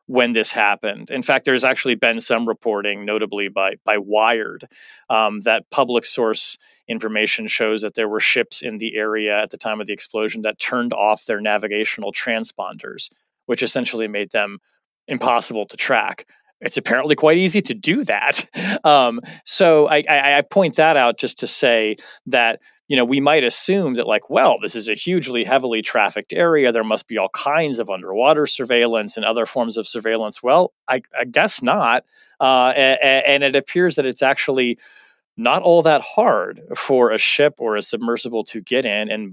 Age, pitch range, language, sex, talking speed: 30-49, 110-135 Hz, English, male, 185 wpm